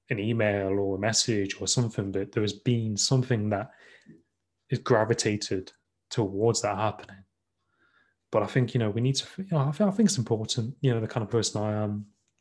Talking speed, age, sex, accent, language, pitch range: 185 wpm, 20-39, male, British, English, 100-120 Hz